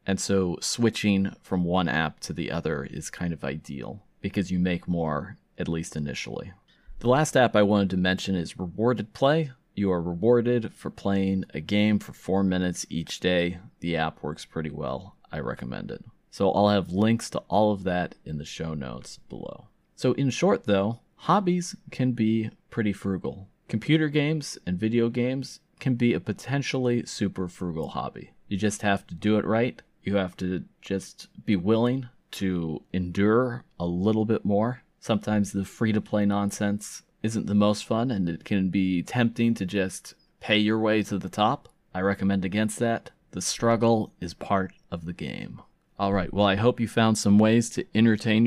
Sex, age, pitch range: male, 30-49, 95-115 Hz